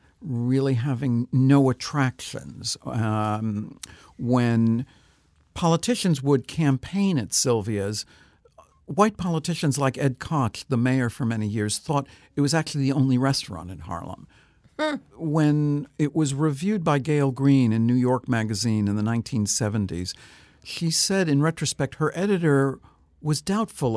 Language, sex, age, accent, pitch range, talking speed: English, male, 60-79, American, 105-145 Hz, 130 wpm